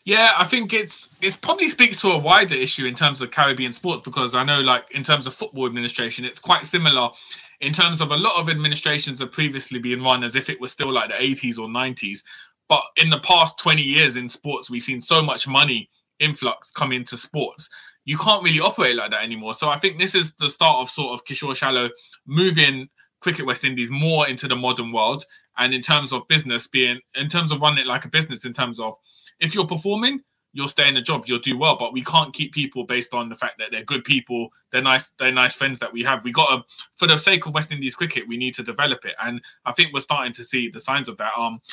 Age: 20-39